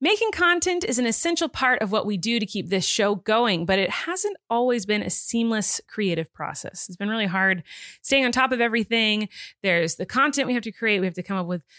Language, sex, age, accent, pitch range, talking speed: English, female, 30-49, American, 195-255 Hz, 235 wpm